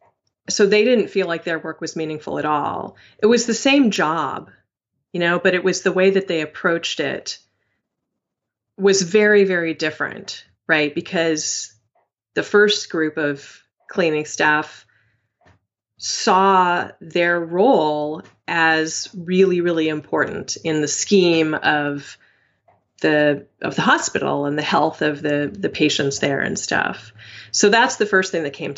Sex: female